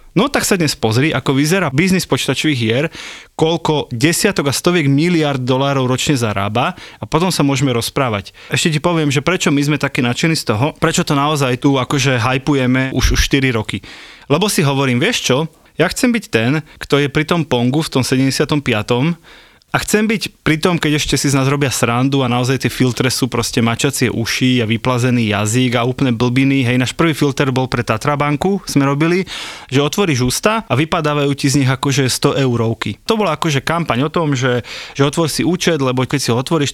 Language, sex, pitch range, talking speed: Slovak, male, 125-155 Hz, 200 wpm